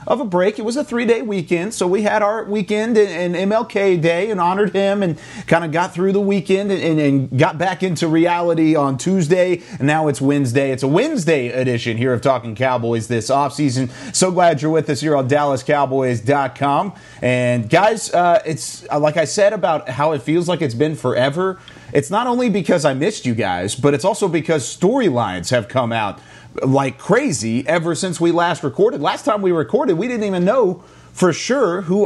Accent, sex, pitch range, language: American, male, 130-180 Hz, English